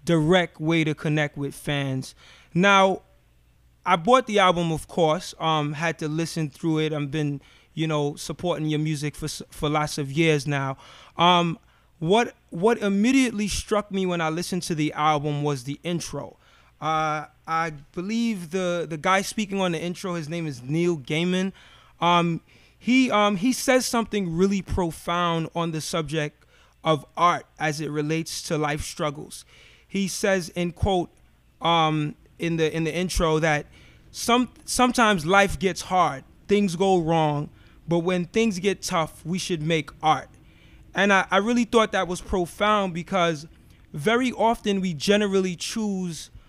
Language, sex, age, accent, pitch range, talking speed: English, male, 20-39, American, 155-190 Hz, 160 wpm